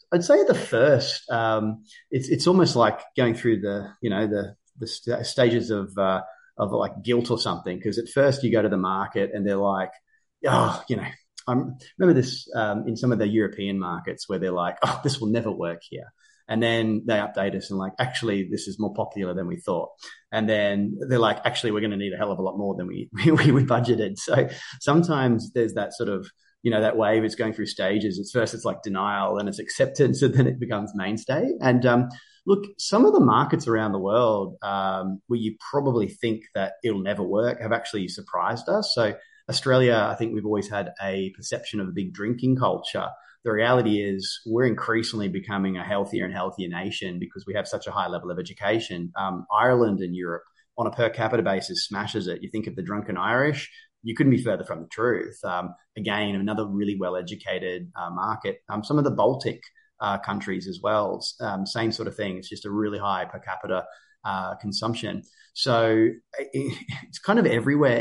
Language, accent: English, Australian